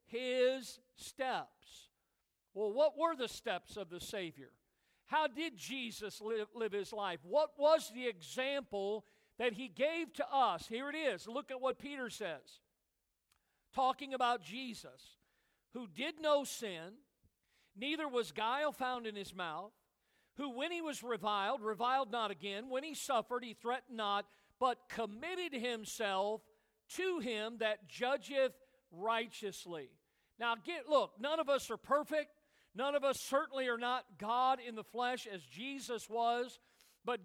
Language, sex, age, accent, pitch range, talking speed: English, male, 50-69, American, 225-280 Hz, 150 wpm